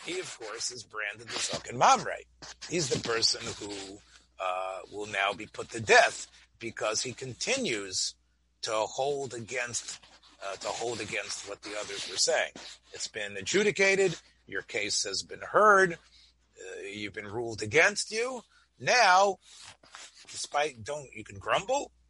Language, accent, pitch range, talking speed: English, American, 95-150 Hz, 145 wpm